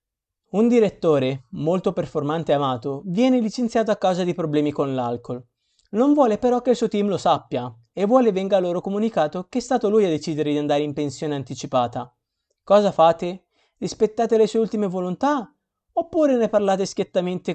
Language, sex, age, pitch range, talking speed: Italian, male, 30-49, 155-215 Hz, 175 wpm